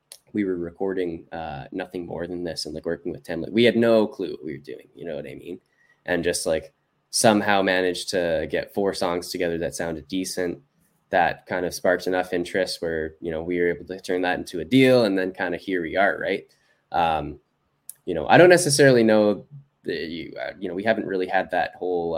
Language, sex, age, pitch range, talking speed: English, male, 10-29, 85-100 Hz, 225 wpm